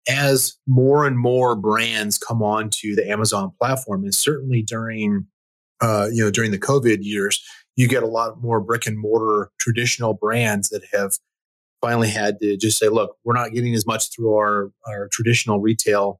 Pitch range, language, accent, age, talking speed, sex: 105-125 Hz, English, American, 30-49, 180 wpm, male